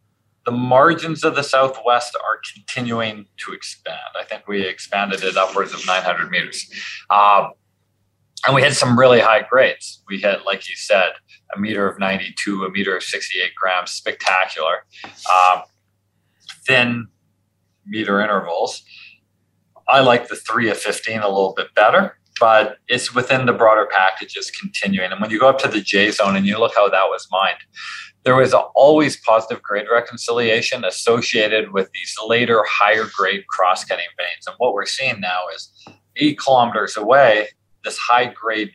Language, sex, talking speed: English, male, 160 wpm